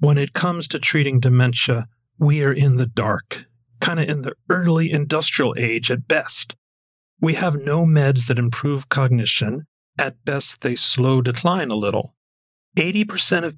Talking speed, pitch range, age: 160 wpm, 120-155 Hz, 40-59